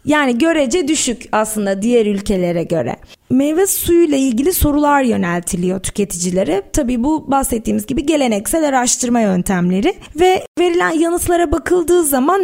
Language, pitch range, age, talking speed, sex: Turkish, 215-315 Hz, 20-39, 125 wpm, female